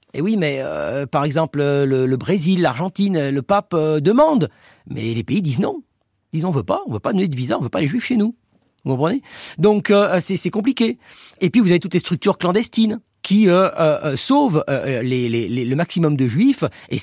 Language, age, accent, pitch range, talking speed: French, 40-59, French, 140-200 Hz, 225 wpm